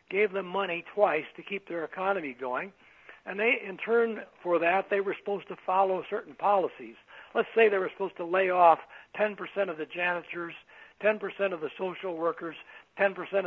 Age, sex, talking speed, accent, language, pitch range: 60-79, male, 180 wpm, American, English, 160-195 Hz